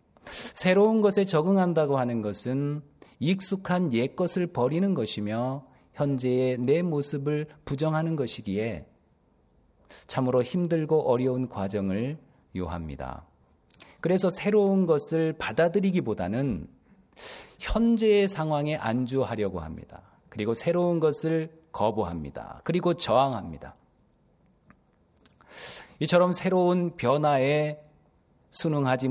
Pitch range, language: 115-165 Hz, Korean